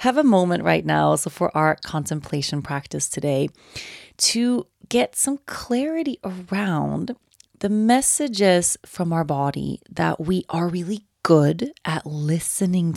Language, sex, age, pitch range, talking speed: English, female, 30-49, 150-200 Hz, 130 wpm